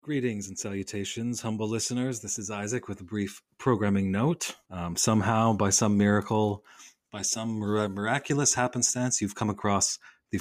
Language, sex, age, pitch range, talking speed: English, male, 30-49, 95-115 Hz, 150 wpm